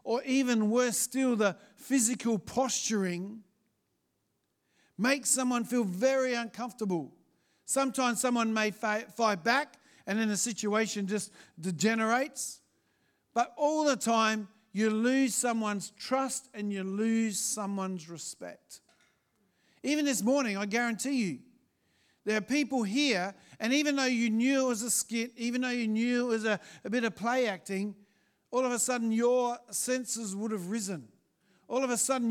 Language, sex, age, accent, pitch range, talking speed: English, male, 50-69, Australian, 205-255 Hz, 150 wpm